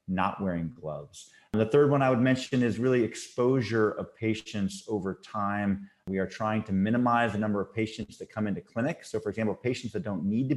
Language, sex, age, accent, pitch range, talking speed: English, male, 30-49, American, 100-125 Hz, 215 wpm